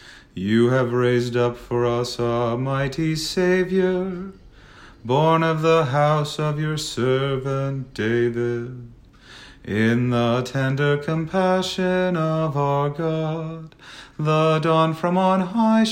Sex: male